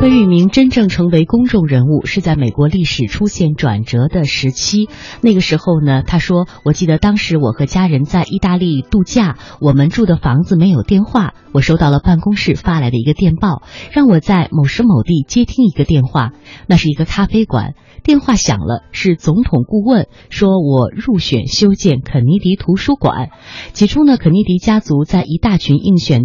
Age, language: 20-39, Chinese